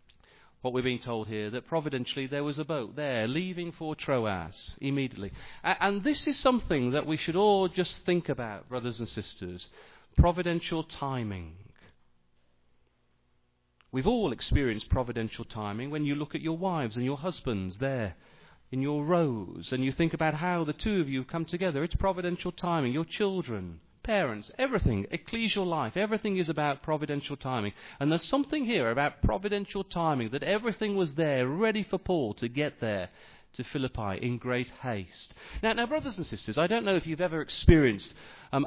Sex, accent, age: male, British, 40-59